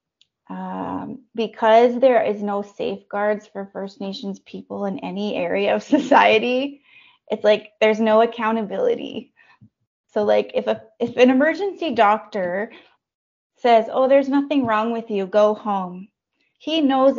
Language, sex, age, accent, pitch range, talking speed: English, female, 20-39, American, 205-255 Hz, 135 wpm